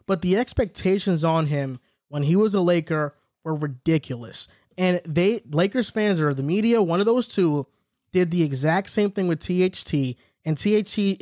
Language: English